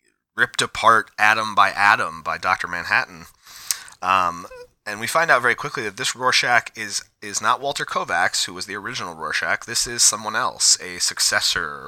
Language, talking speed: English, 170 wpm